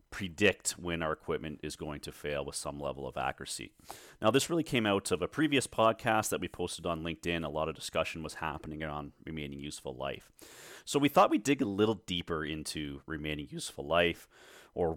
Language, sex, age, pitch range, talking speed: English, male, 30-49, 75-100 Hz, 200 wpm